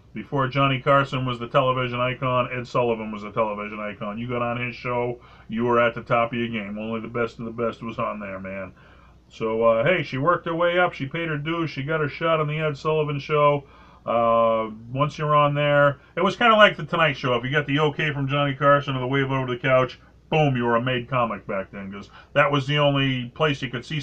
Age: 40-59